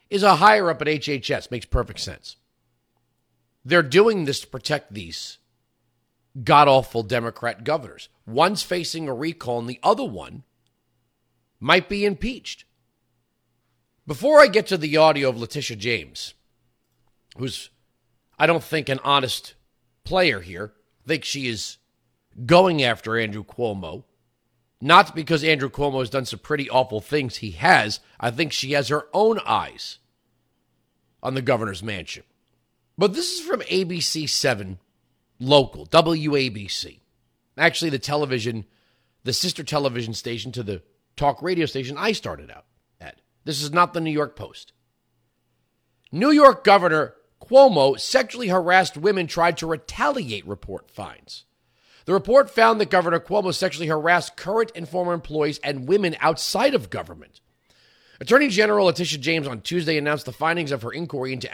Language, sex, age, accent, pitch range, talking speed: English, male, 40-59, American, 120-175 Hz, 145 wpm